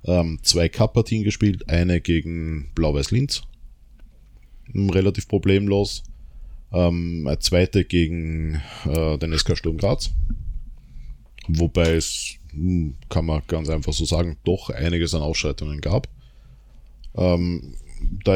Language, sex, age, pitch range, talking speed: German, male, 20-39, 80-100 Hz, 95 wpm